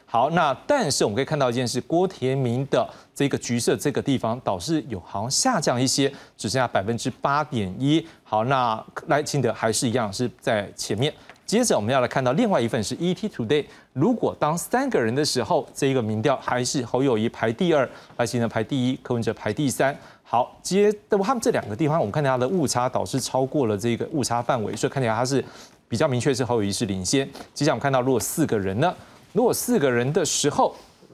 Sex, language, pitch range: male, Chinese, 115-150 Hz